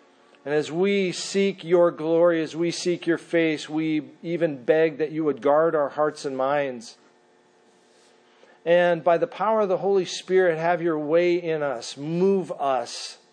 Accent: American